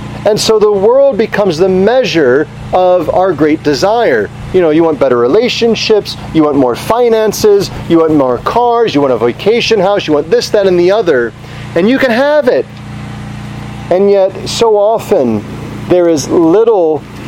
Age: 40-59